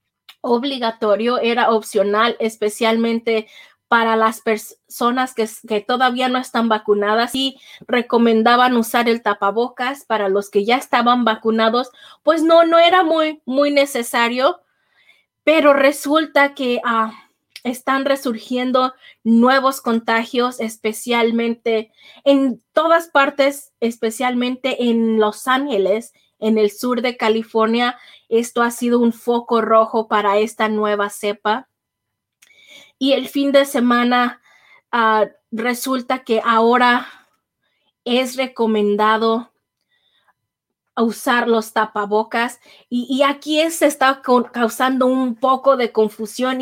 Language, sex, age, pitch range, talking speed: Spanish, female, 20-39, 225-265 Hz, 110 wpm